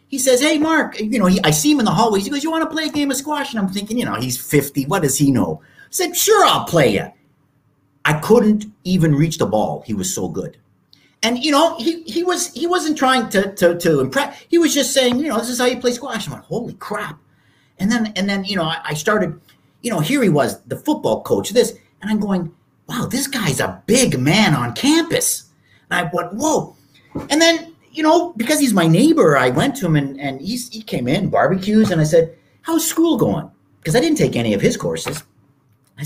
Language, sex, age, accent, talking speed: English, male, 50-69, American, 245 wpm